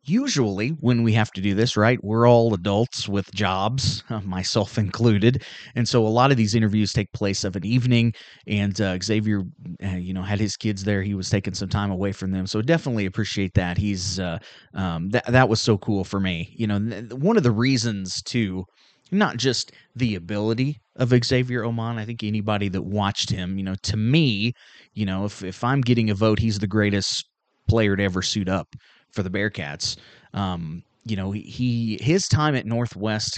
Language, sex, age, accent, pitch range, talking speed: English, male, 30-49, American, 100-115 Hz, 200 wpm